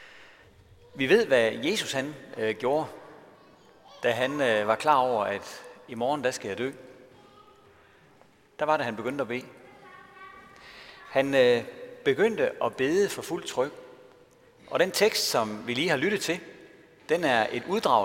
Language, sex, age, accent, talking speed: Danish, male, 40-59, native, 145 wpm